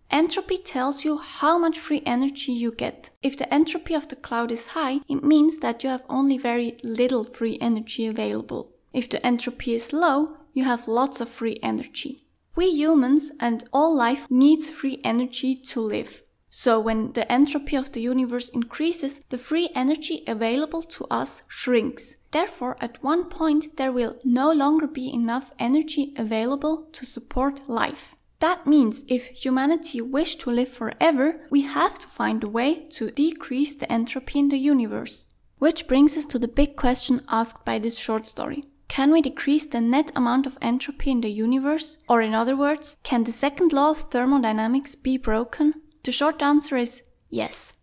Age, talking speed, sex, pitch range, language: 10-29, 175 wpm, female, 240-300 Hz, English